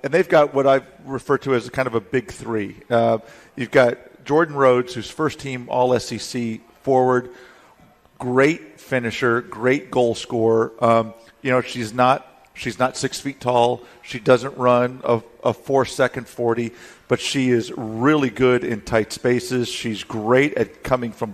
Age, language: 50-69, English